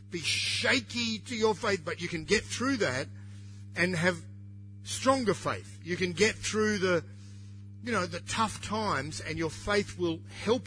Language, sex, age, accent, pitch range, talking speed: English, male, 50-69, Australian, 100-170 Hz, 170 wpm